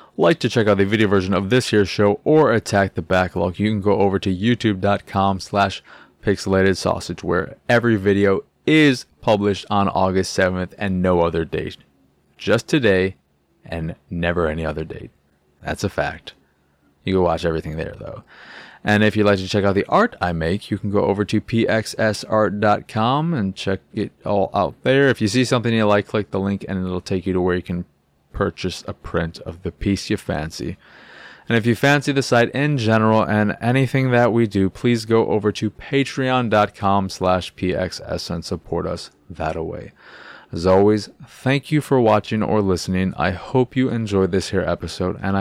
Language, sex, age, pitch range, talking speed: English, male, 20-39, 90-115 Hz, 185 wpm